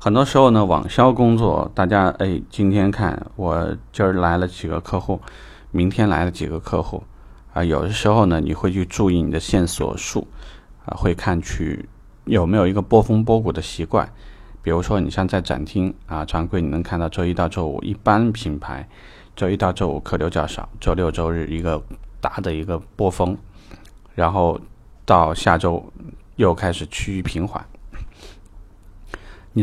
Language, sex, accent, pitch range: Chinese, male, native, 85-110 Hz